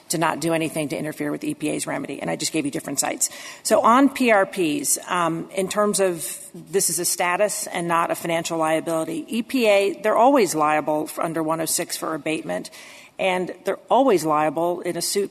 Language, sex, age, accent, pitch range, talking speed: English, female, 40-59, American, 170-230 Hz, 190 wpm